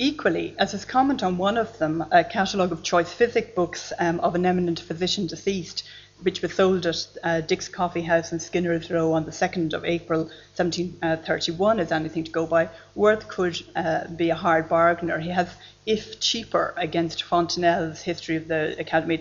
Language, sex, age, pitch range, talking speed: English, female, 30-49, 165-185 Hz, 185 wpm